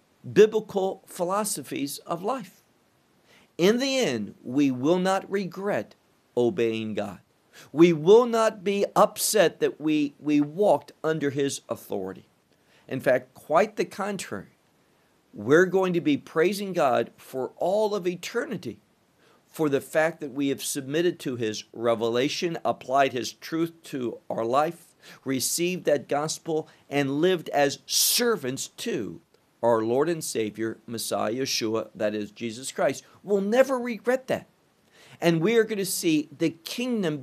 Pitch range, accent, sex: 130-195 Hz, American, male